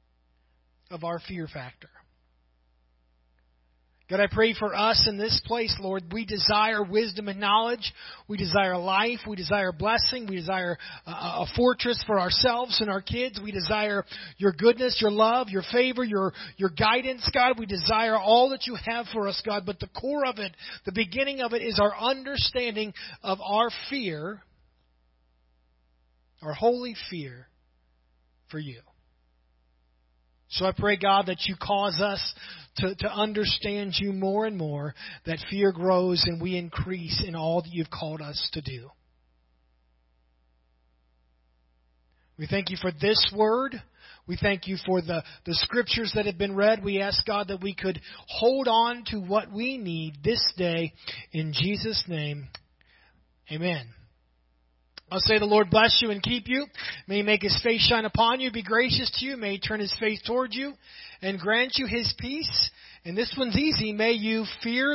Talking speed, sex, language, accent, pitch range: 165 wpm, male, English, American, 145-225 Hz